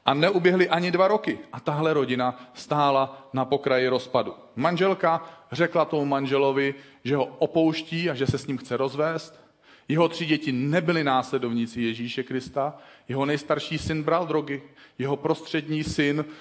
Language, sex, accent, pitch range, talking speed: Czech, male, native, 130-165 Hz, 150 wpm